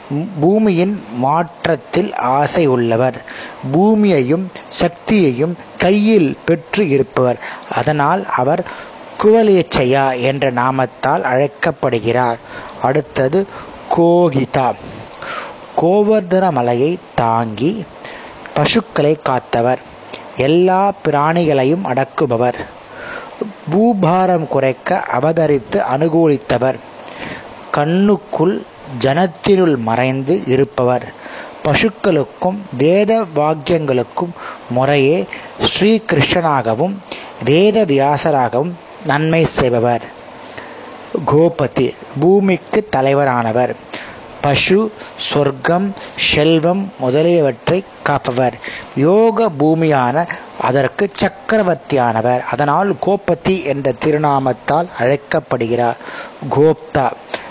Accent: native